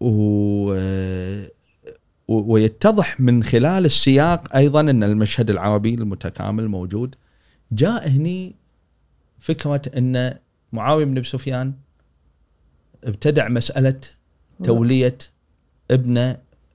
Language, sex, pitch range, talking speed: Arabic, male, 95-135 Hz, 80 wpm